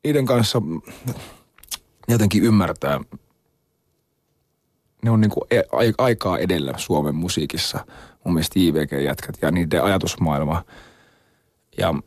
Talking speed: 95 wpm